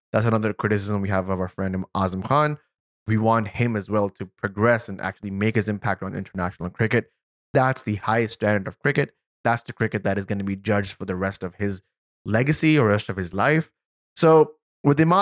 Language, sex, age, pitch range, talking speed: English, male, 20-39, 100-125 Hz, 215 wpm